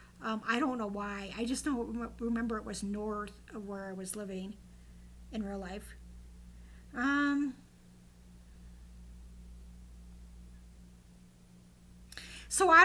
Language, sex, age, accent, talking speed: English, female, 50-69, American, 105 wpm